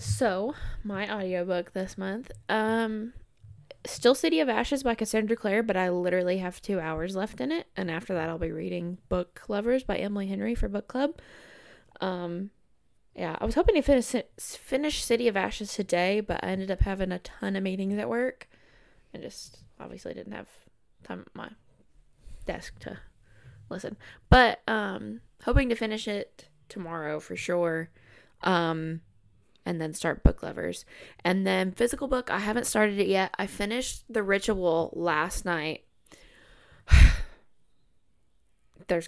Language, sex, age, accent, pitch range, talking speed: English, female, 20-39, American, 155-215 Hz, 155 wpm